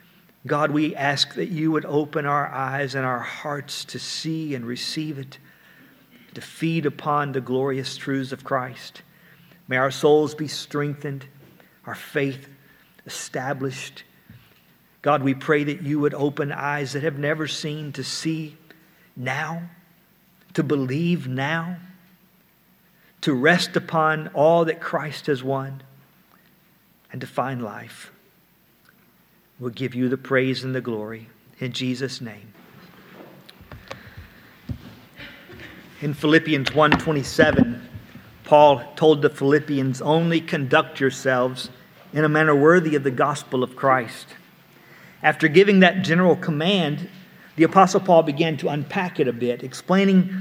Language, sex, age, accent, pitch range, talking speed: English, male, 50-69, American, 135-170 Hz, 130 wpm